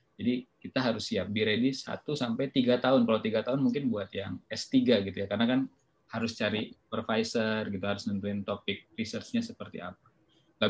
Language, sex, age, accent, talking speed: Indonesian, male, 20-39, native, 185 wpm